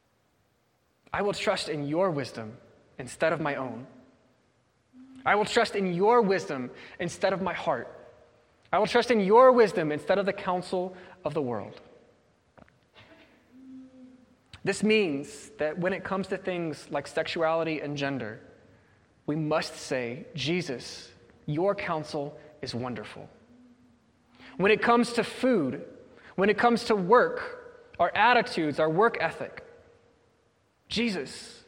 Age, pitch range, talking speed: 20-39, 145-225 Hz, 130 wpm